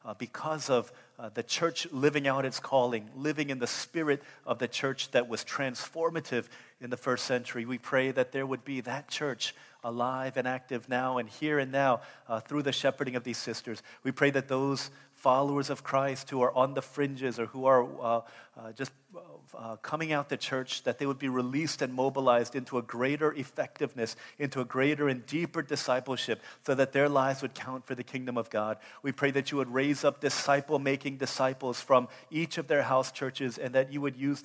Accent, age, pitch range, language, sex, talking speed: American, 40-59, 125-140 Hz, English, male, 205 wpm